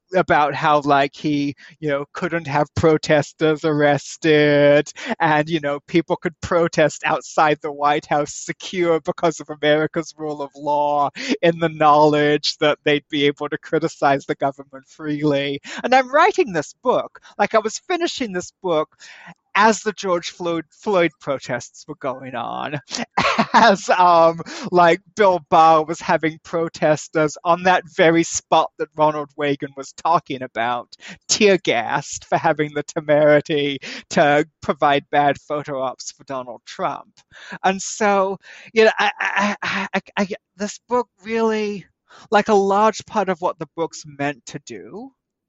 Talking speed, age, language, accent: 145 wpm, 30-49, English, American